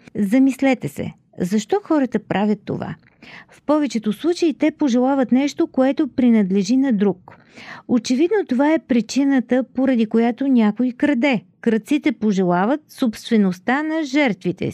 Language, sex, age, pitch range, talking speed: Bulgarian, female, 50-69, 200-275 Hz, 120 wpm